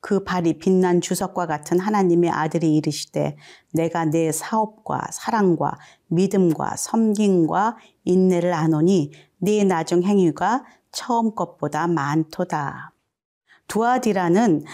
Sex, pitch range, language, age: female, 160-200 Hz, Korean, 40-59